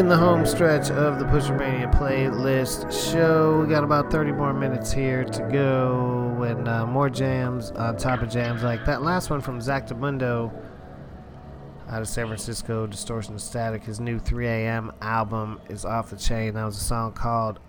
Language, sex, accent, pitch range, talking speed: English, male, American, 110-140 Hz, 175 wpm